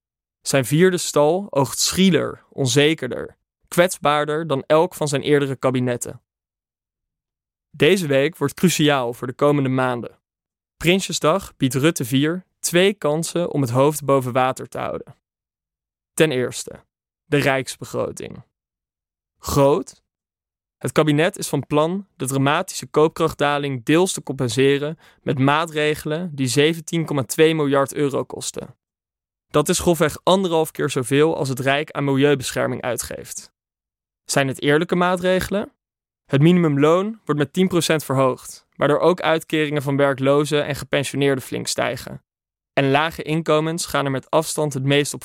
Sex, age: male, 20-39